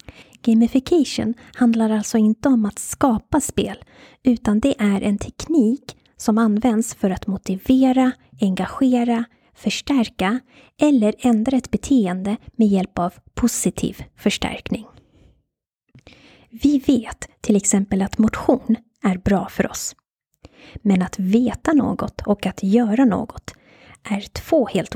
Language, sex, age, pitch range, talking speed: Swedish, female, 20-39, 200-250 Hz, 120 wpm